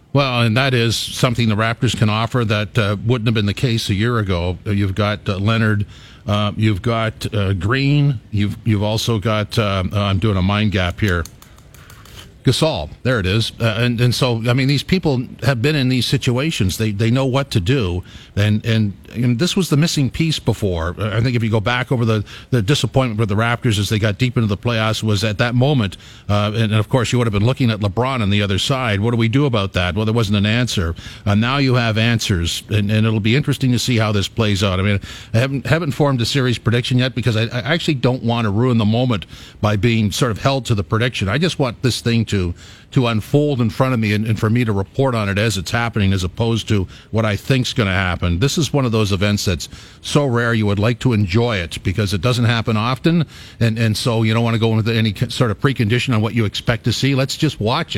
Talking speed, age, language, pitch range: 250 wpm, 50-69, English, 105-125 Hz